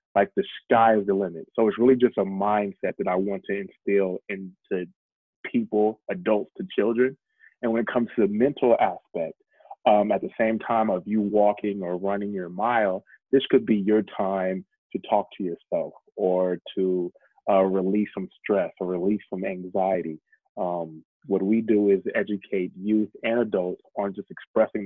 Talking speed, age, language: 175 wpm, 20-39, English